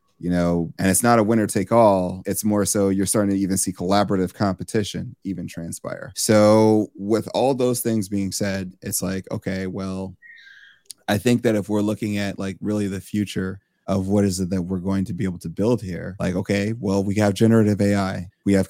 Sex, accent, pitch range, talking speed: male, American, 95-105 Hz, 210 wpm